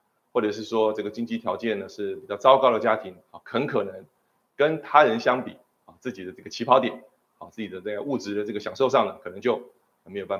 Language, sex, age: Chinese, male, 30-49